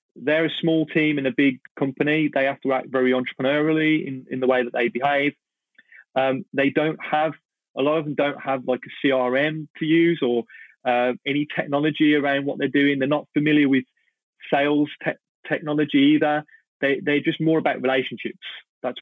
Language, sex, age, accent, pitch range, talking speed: English, male, 30-49, British, 125-150 Hz, 180 wpm